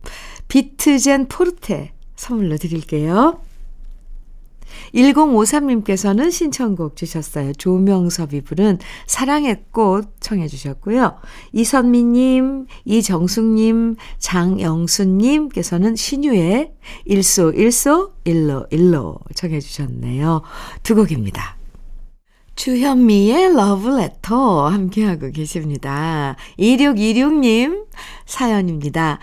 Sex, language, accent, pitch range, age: female, Korean, native, 170-255 Hz, 50-69